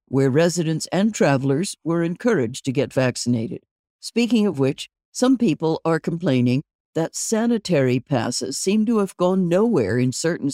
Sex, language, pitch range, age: female, English, 135-185 Hz, 60-79